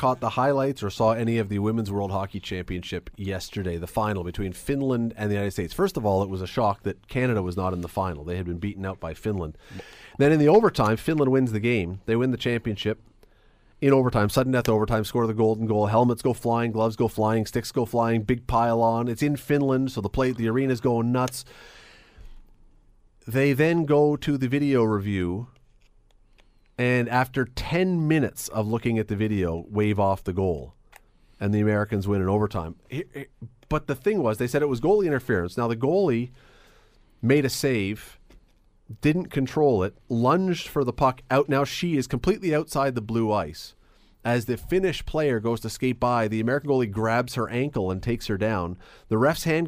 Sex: male